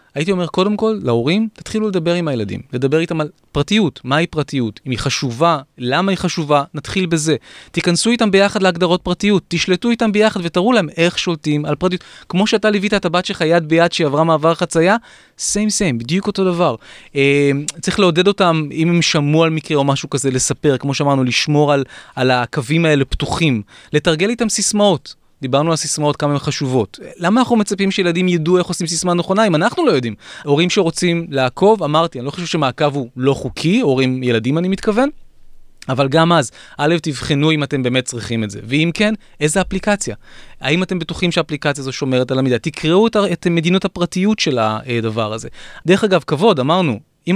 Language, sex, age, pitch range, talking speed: Hebrew, male, 20-39, 140-185 Hz, 185 wpm